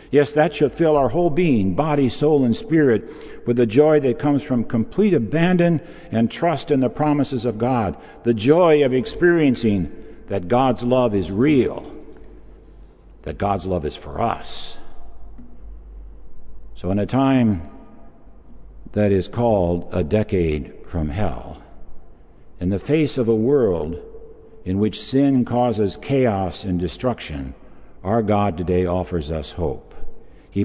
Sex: male